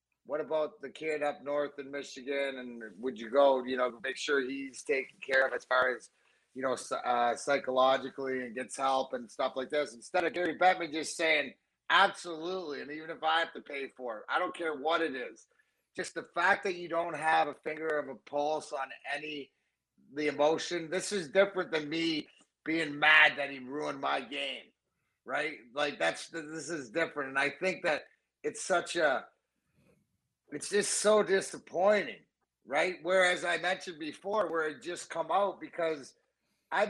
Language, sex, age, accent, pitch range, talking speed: English, male, 30-49, American, 140-175 Hz, 185 wpm